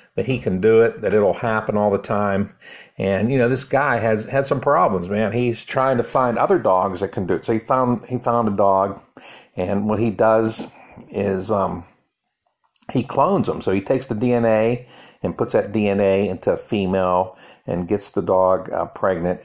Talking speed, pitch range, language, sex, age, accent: 200 wpm, 95-115 Hz, English, male, 50-69, American